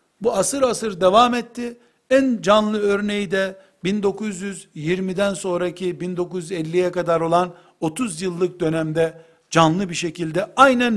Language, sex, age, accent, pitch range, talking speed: Turkish, male, 60-79, native, 165-205 Hz, 115 wpm